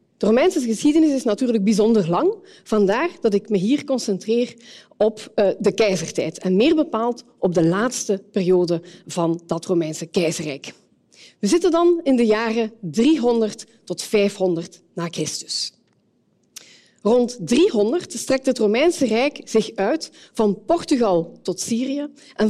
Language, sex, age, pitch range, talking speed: Dutch, female, 40-59, 185-260 Hz, 135 wpm